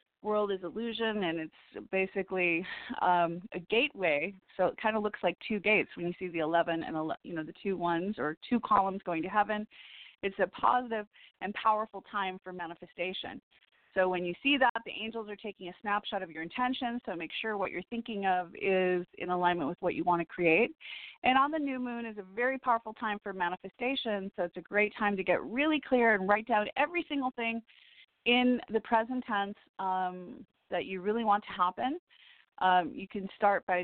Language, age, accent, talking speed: English, 30-49, American, 205 wpm